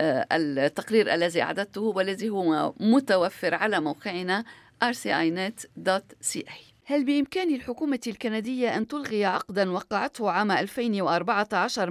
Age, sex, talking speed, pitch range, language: 50-69, female, 95 wpm, 185-230 Hz, Arabic